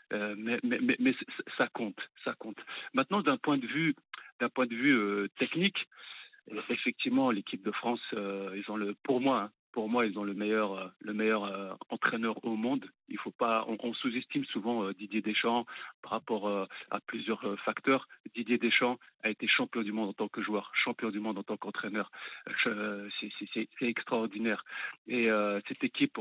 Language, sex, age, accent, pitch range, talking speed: French, male, 40-59, French, 105-135 Hz, 200 wpm